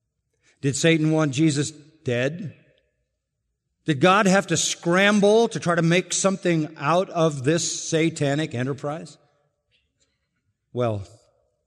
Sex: male